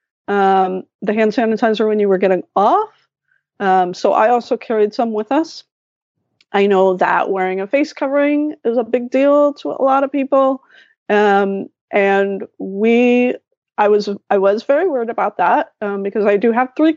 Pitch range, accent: 205-275 Hz, American